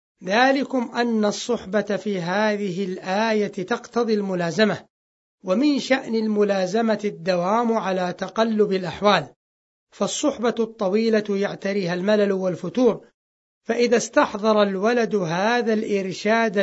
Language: Arabic